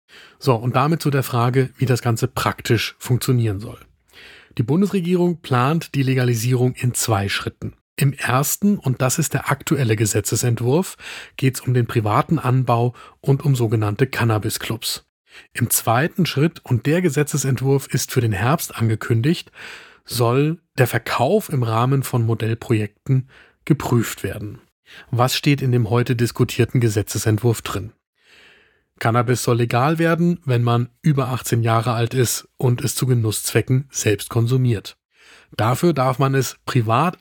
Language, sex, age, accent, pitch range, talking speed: German, male, 40-59, German, 115-140 Hz, 140 wpm